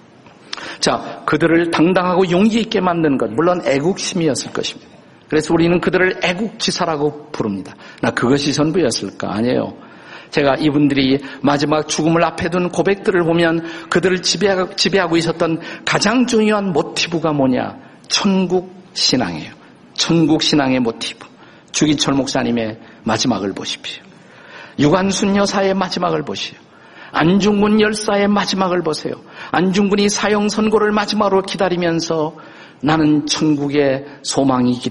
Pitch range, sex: 150-200 Hz, male